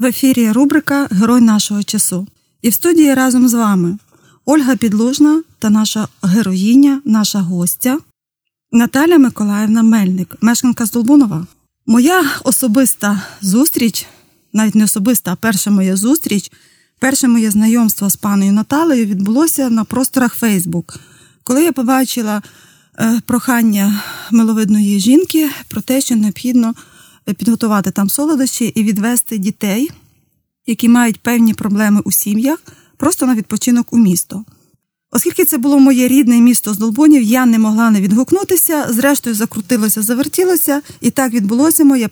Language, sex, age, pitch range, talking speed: Ukrainian, female, 20-39, 205-265 Hz, 130 wpm